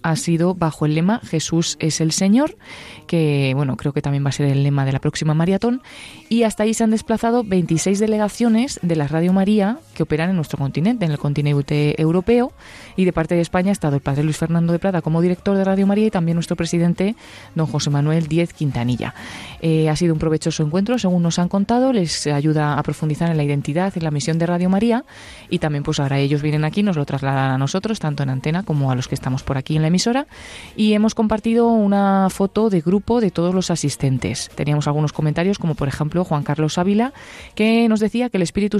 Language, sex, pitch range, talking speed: Spanish, female, 150-200 Hz, 225 wpm